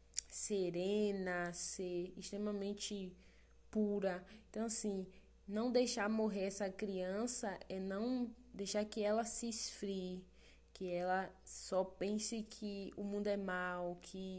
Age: 20-39